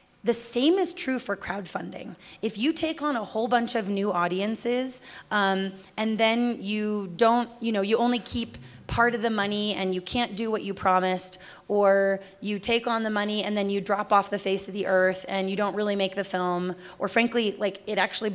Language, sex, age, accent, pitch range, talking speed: English, female, 20-39, American, 185-220 Hz, 215 wpm